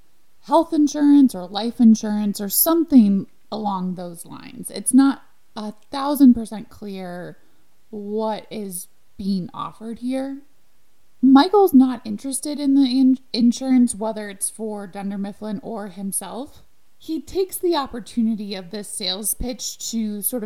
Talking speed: 130 wpm